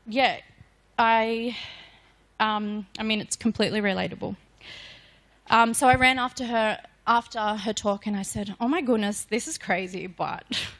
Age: 20-39